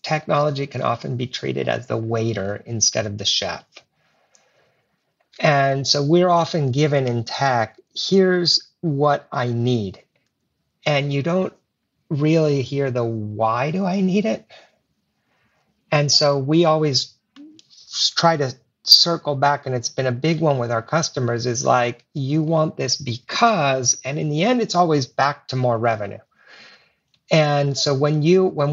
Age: 50-69